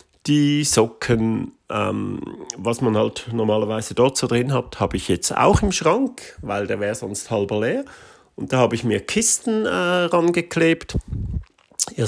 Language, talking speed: German, 160 wpm